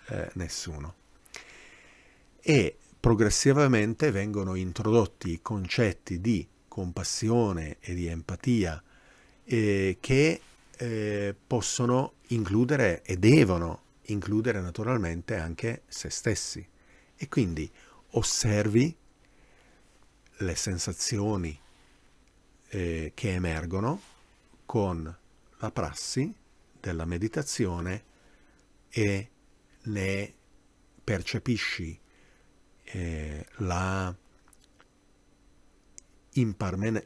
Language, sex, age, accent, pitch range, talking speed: Italian, male, 50-69, native, 85-115 Hz, 70 wpm